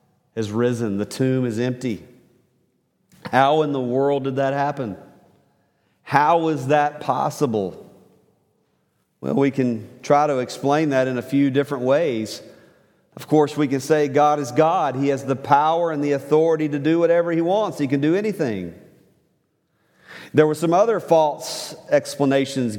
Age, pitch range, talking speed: 40-59, 125-155 Hz, 155 wpm